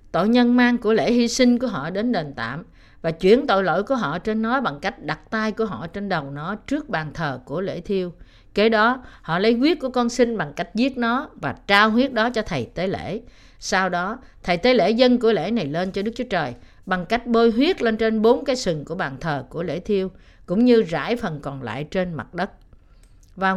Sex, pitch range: female, 170-235 Hz